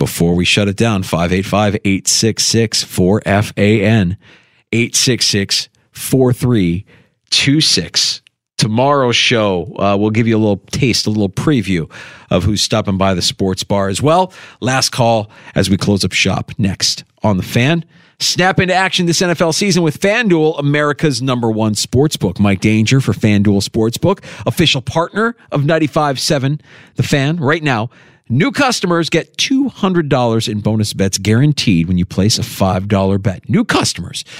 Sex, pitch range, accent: male, 110-160 Hz, American